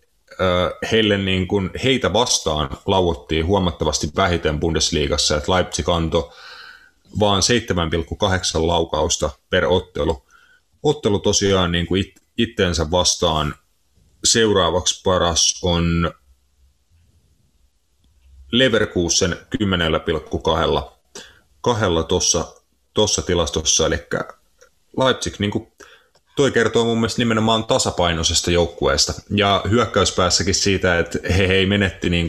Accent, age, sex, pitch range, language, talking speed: native, 30-49, male, 80-100 Hz, Finnish, 85 wpm